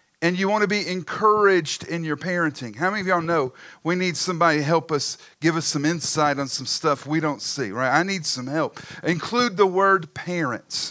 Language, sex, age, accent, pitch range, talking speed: English, male, 40-59, American, 140-180 Hz, 215 wpm